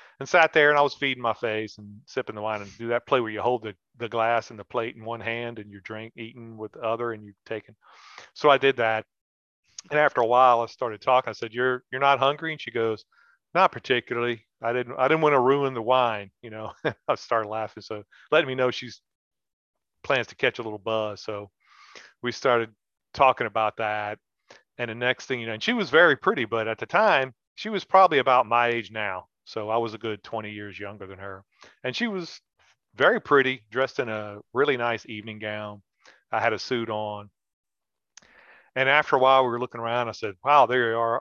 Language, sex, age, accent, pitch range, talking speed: English, male, 40-59, American, 105-125 Hz, 225 wpm